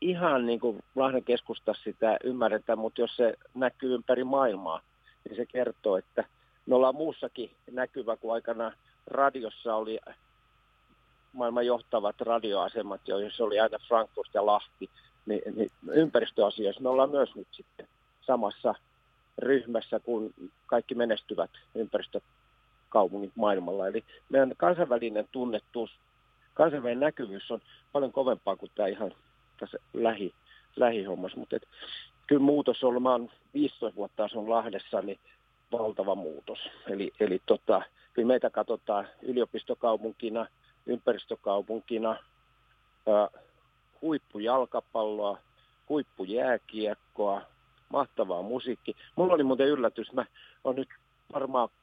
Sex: male